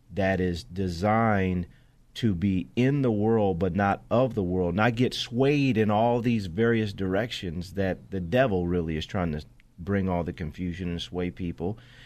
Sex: male